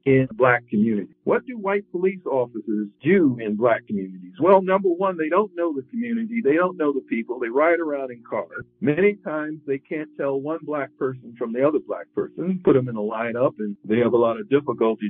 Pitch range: 120-170 Hz